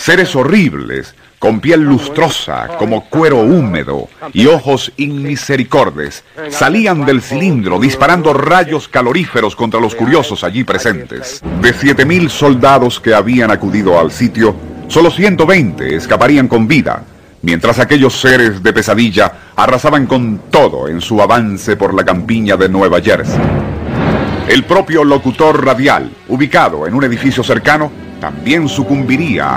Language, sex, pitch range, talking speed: Spanish, male, 105-140 Hz, 130 wpm